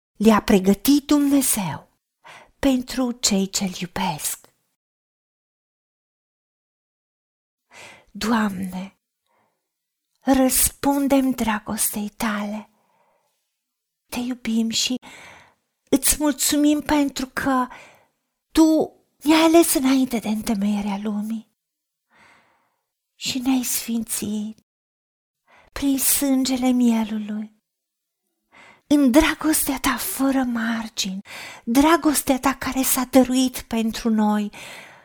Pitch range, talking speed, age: 225-285 Hz, 75 wpm, 40-59